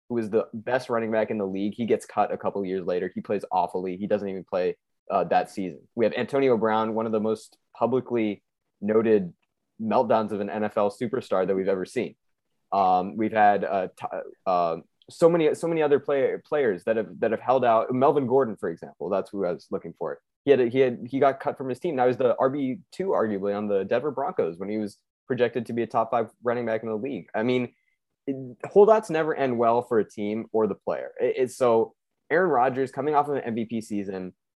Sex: male